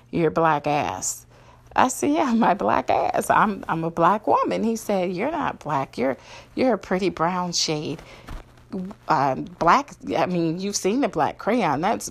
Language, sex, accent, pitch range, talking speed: English, female, American, 165-220 Hz, 175 wpm